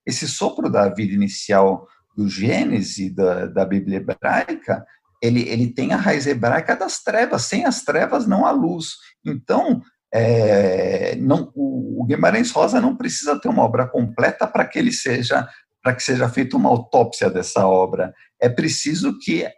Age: 50-69